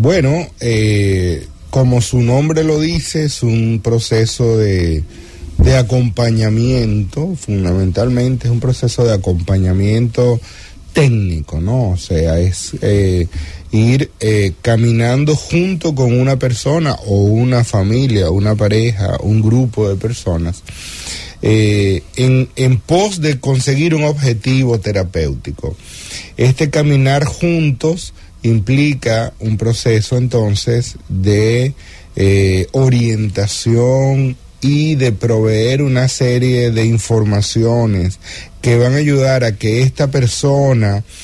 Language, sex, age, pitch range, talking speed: English, male, 30-49, 100-130 Hz, 110 wpm